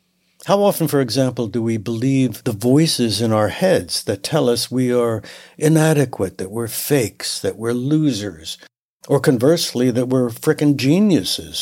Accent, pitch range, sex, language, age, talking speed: American, 120-155 Hz, male, English, 60-79, 155 wpm